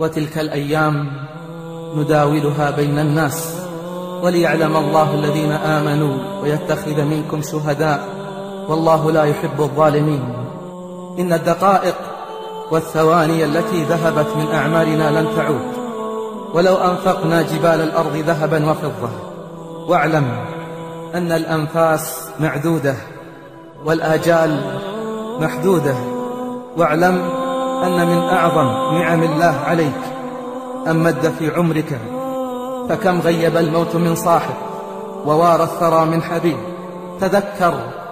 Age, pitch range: 30-49, 155-185 Hz